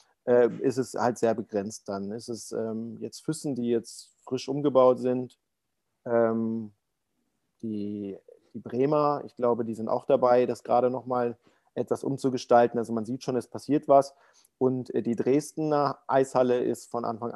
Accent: German